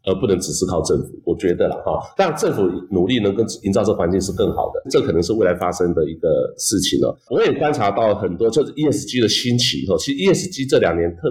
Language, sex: Chinese, male